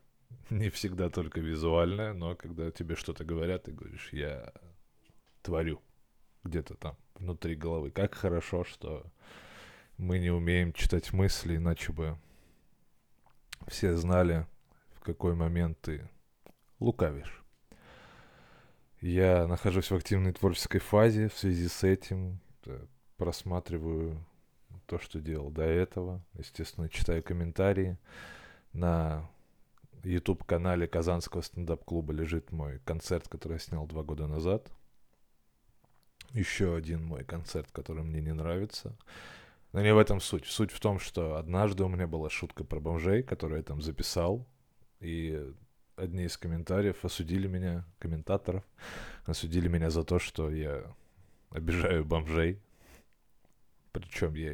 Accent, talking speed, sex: native, 125 wpm, male